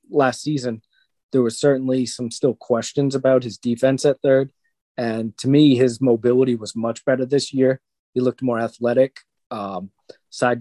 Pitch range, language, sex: 115-140 Hz, English, male